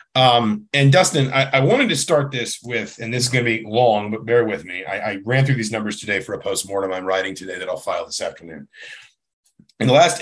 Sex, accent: male, American